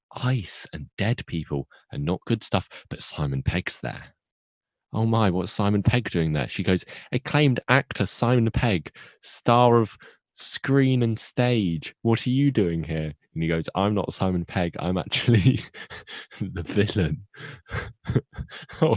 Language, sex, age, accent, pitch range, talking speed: English, male, 20-39, British, 85-120 Hz, 150 wpm